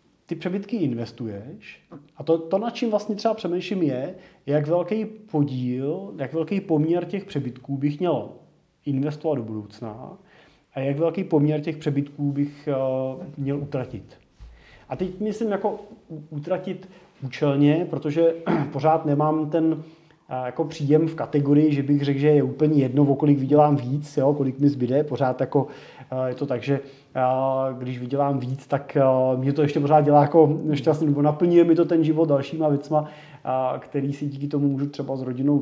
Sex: male